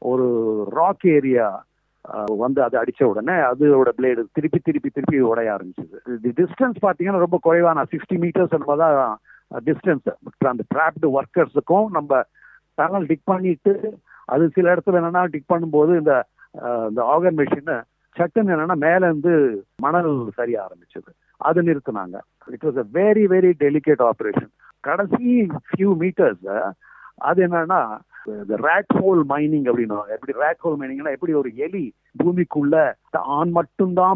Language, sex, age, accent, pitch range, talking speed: Tamil, male, 50-69, native, 140-180 Hz, 70 wpm